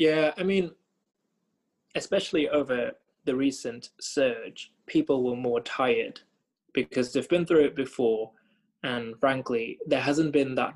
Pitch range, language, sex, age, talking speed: 125-190 Hz, English, male, 20-39, 135 wpm